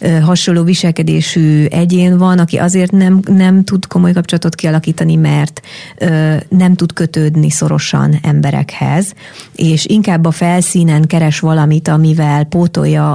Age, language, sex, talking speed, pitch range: 30-49, Hungarian, female, 120 wpm, 160-180 Hz